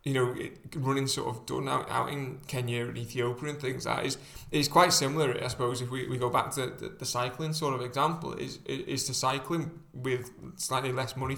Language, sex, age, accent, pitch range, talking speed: English, male, 20-39, British, 120-140 Hz, 225 wpm